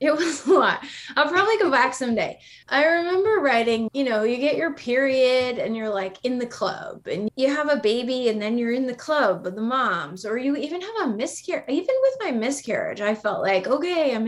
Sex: female